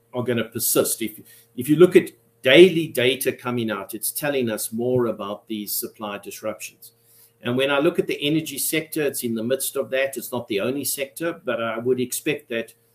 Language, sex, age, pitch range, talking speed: English, male, 50-69, 115-150 Hz, 210 wpm